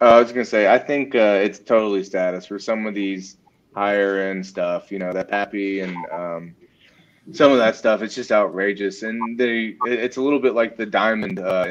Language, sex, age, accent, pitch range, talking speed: English, male, 20-39, American, 90-105 Hz, 215 wpm